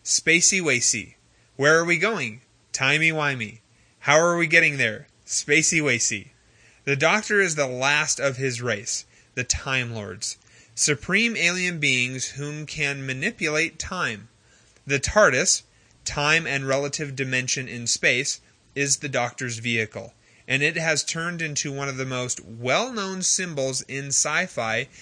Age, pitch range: 30-49, 125-160 Hz